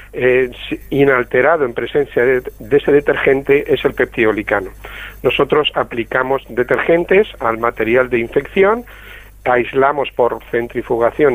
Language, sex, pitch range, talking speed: Spanish, male, 130-180 Hz, 105 wpm